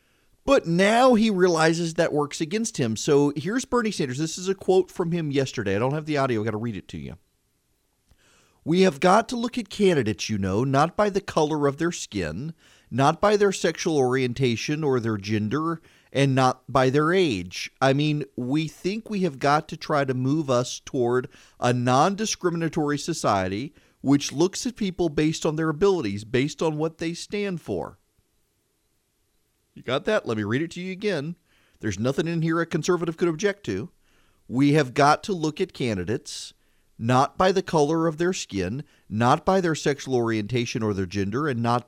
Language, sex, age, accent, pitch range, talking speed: English, male, 40-59, American, 125-180 Hz, 190 wpm